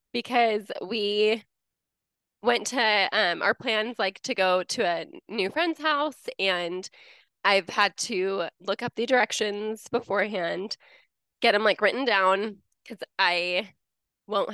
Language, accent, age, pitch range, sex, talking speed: English, American, 20-39, 190-235 Hz, female, 130 wpm